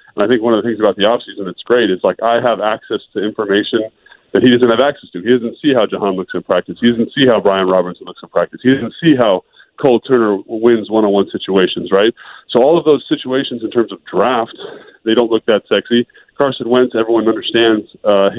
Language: English